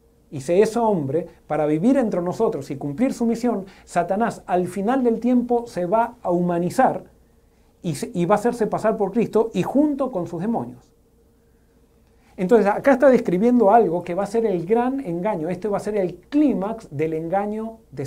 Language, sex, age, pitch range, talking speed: Spanish, male, 40-59, 155-225 Hz, 190 wpm